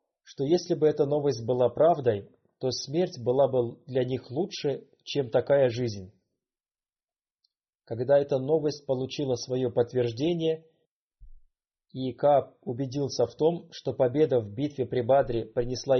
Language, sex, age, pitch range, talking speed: Russian, male, 30-49, 125-160 Hz, 130 wpm